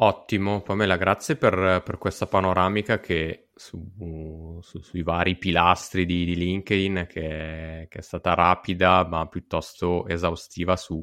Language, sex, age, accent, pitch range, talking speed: Italian, male, 20-39, native, 85-95 Hz, 140 wpm